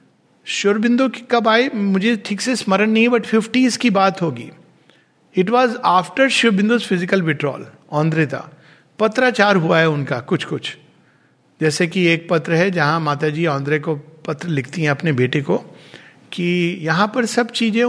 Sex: male